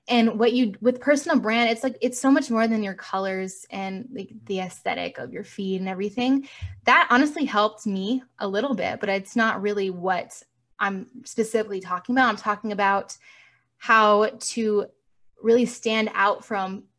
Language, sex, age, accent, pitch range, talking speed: English, female, 10-29, American, 195-240 Hz, 175 wpm